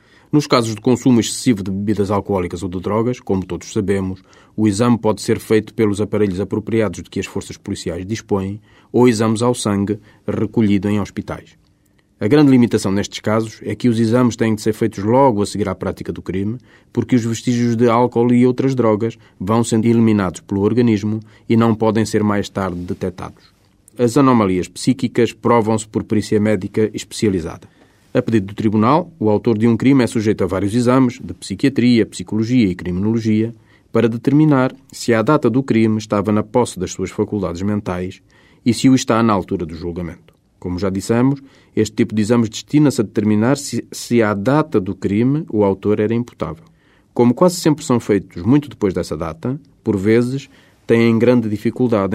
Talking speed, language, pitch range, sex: 180 wpm, Portuguese, 100-120 Hz, male